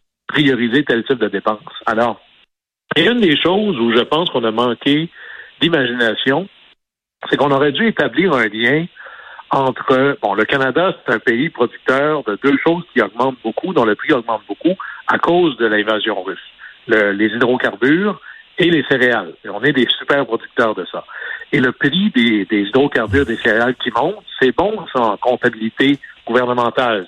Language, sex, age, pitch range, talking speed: French, male, 60-79, 115-150 Hz, 170 wpm